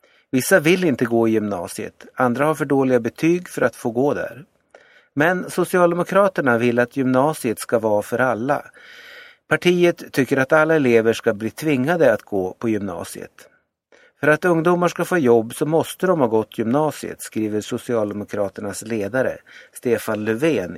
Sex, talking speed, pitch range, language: male, 155 wpm, 115-165 Hz, Swedish